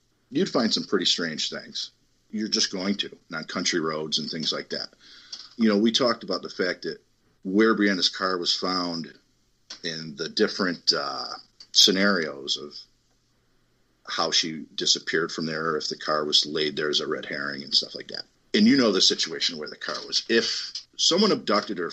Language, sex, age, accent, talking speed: English, male, 40-59, American, 190 wpm